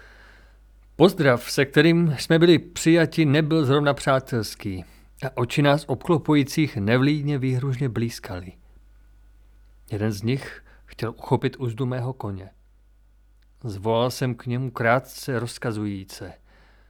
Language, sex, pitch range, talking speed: Czech, male, 100-155 Hz, 105 wpm